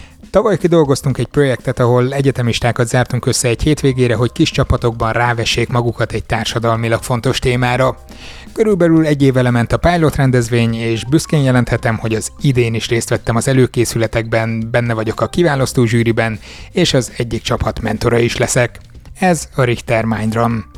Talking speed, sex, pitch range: 150 wpm, male, 115-135 Hz